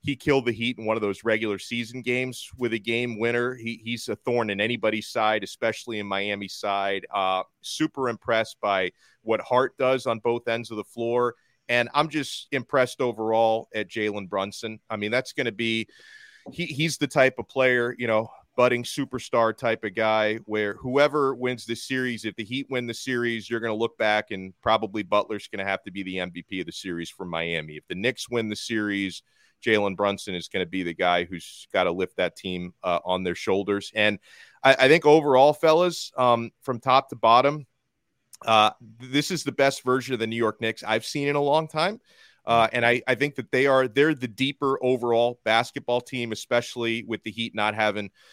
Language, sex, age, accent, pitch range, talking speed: English, male, 30-49, American, 105-125 Hz, 205 wpm